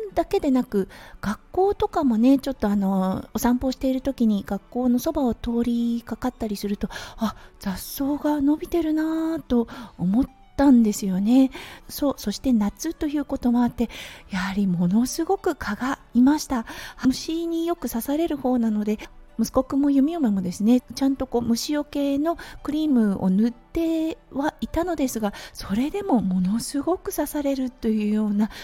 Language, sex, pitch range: Japanese, female, 220-290 Hz